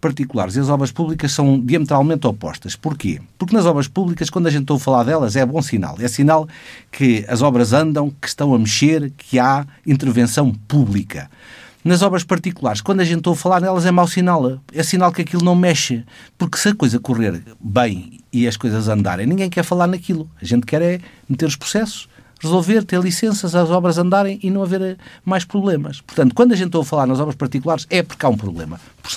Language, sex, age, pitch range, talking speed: Portuguese, male, 50-69, 120-175 Hz, 210 wpm